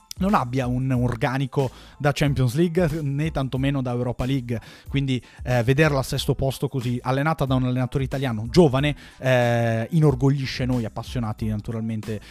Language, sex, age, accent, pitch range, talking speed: Italian, male, 30-49, native, 120-145 Hz, 145 wpm